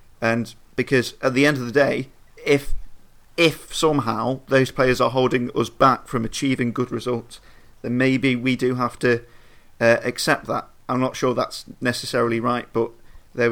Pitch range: 115-130 Hz